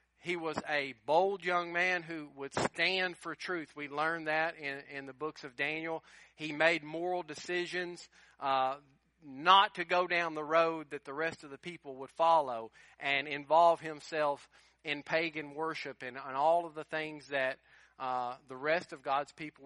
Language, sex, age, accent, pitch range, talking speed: English, male, 40-59, American, 145-170 Hz, 175 wpm